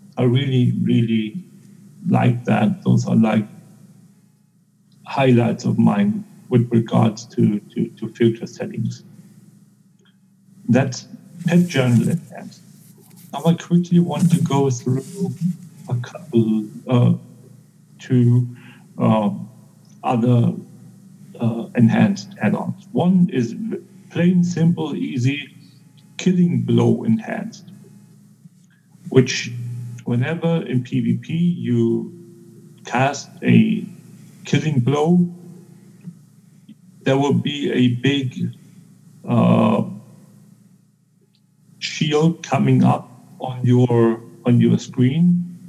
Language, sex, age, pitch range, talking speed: English, male, 60-79, 125-180 Hz, 90 wpm